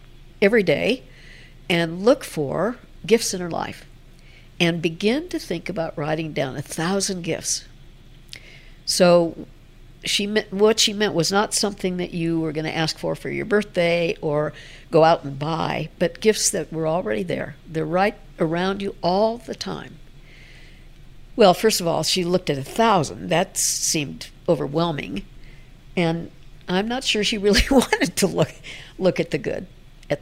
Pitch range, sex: 155-200 Hz, female